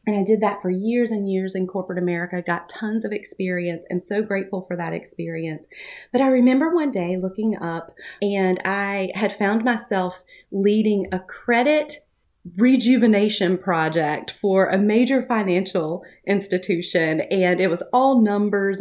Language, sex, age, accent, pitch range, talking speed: English, female, 30-49, American, 185-230 Hz, 155 wpm